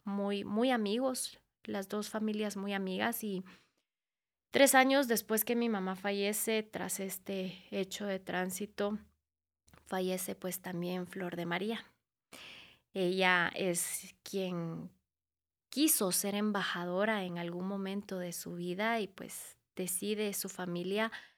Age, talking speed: 20-39, 125 wpm